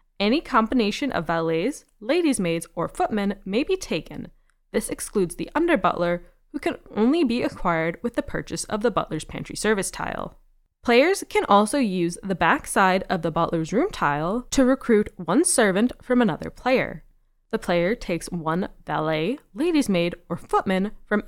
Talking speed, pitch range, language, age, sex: 160 wpm, 175-250 Hz, English, 20-39, female